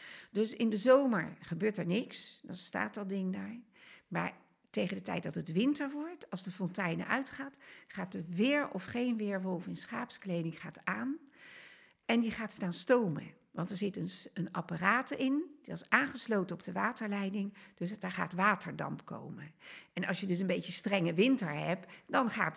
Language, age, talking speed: Dutch, 50-69, 180 wpm